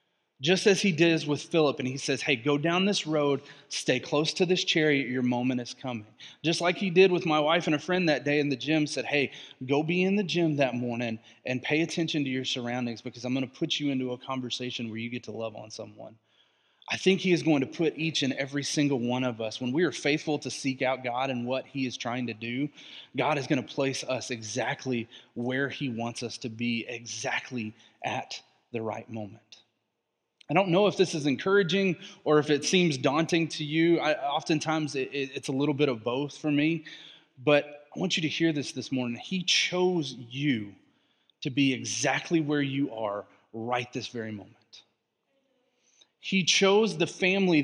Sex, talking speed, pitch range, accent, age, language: male, 210 wpm, 125-165 Hz, American, 30-49, English